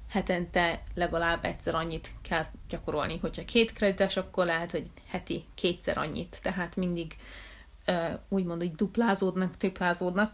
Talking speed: 120 wpm